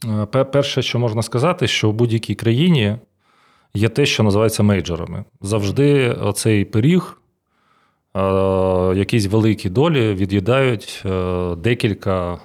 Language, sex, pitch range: Ukrainian, male, 95-120 Hz